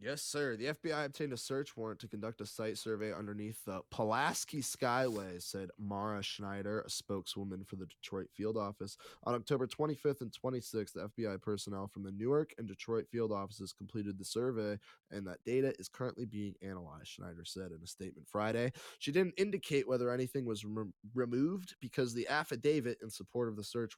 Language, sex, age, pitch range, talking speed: English, male, 20-39, 95-125 Hz, 185 wpm